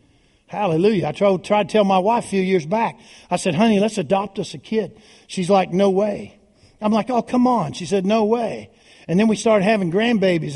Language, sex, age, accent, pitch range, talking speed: English, male, 60-79, American, 190-275 Hz, 220 wpm